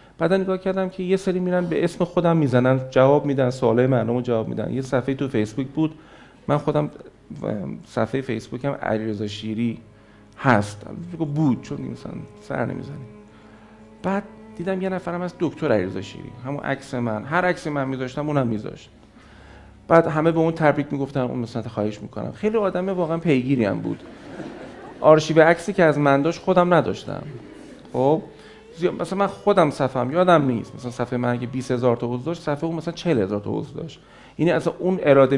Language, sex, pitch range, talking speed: Persian, male, 115-165 Hz, 170 wpm